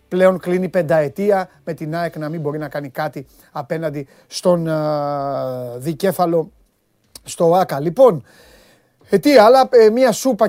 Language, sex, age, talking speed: Greek, male, 30-49, 125 wpm